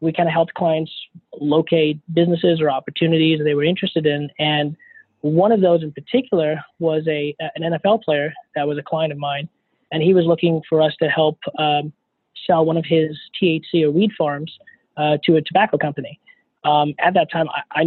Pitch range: 150-170 Hz